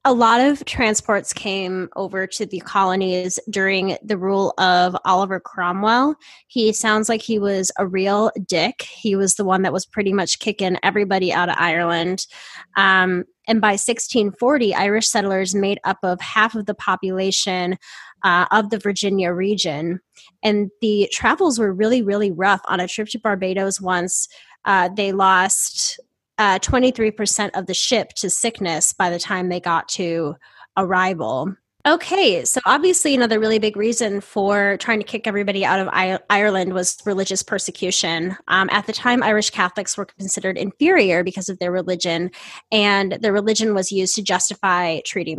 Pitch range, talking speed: 185-215 Hz, 170 wpm